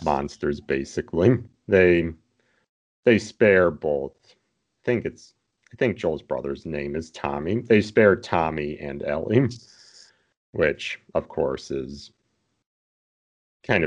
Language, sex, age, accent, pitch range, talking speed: English, male, 40-59, American, 75-100 Hz, 115 wpm